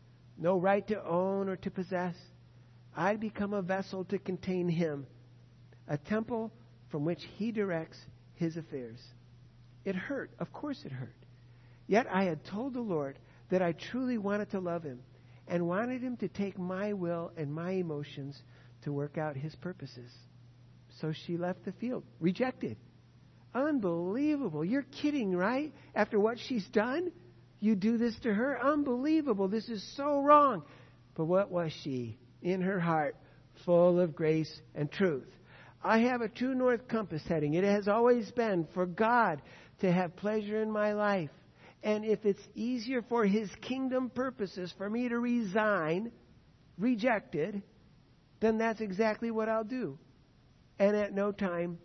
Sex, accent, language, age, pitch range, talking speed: male, American, English, 60-79, 150-220 Hz, 155 wpm